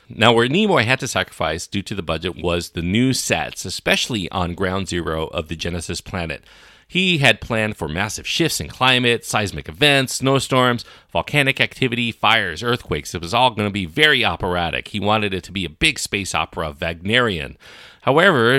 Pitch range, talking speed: 90-120 Hz, 180 wpm